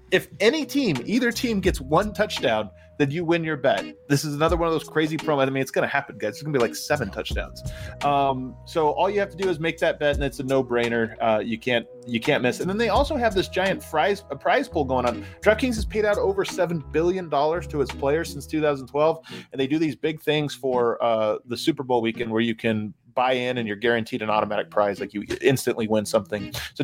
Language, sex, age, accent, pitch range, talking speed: English, male, 20-39, American, 115-155 Hz, 250 wpm